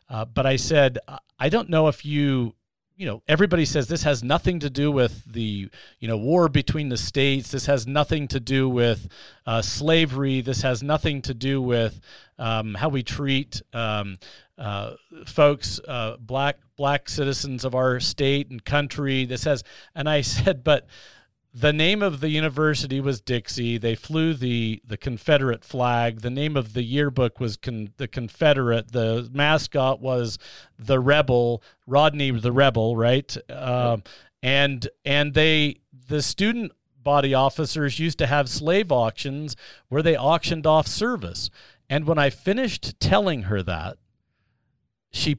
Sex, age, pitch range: male, 40-59, 115-145 Hz